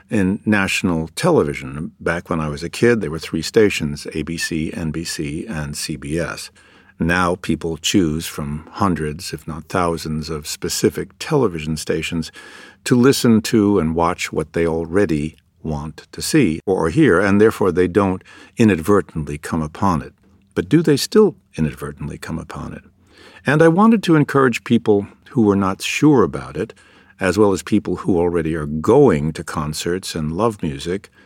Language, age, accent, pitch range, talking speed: English, 60-79, American, 80-105 Hz, 160 wpm